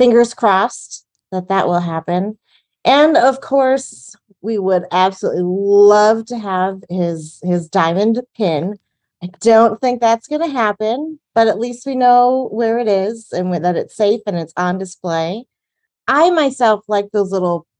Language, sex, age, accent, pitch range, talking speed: English, female, 30-49, American, 170-220 Hz, 160 wpm